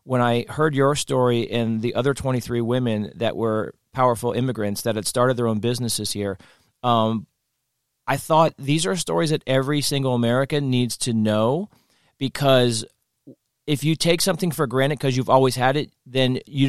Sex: male